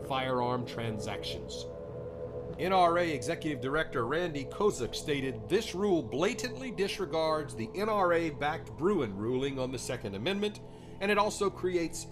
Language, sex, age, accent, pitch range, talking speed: English, male, 50-69, American, 110-170 Hz, 120 wpm